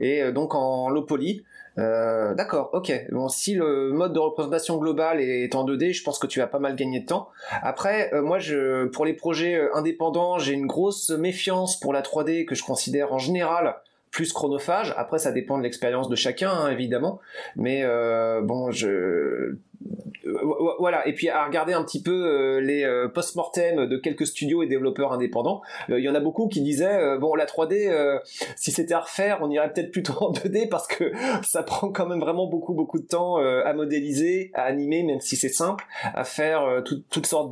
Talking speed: 195 wpm